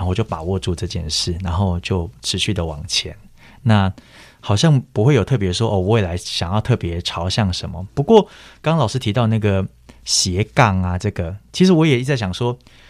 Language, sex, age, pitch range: Chinese, male, 30-49, 90-120 Hz